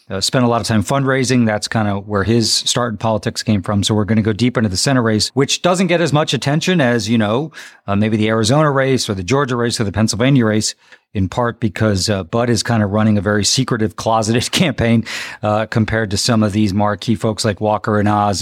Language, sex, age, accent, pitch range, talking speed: English, male, 40-59, American, 110-135 Hz, 245 wpm